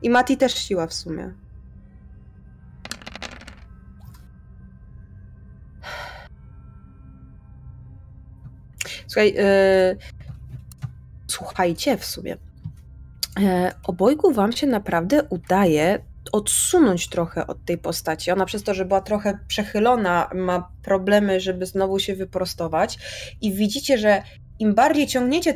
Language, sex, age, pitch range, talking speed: Polish, female, 20-39, 190-270 Hz, 90 wpm